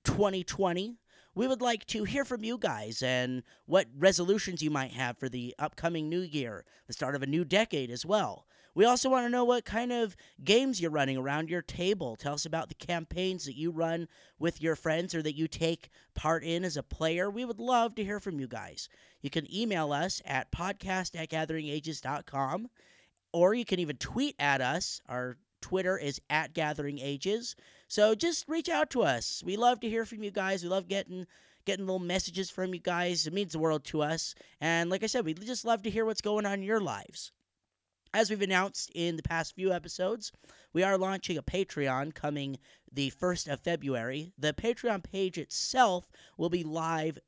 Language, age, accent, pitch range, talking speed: English, 30-49, American, 150-200 Hz, 205 wpm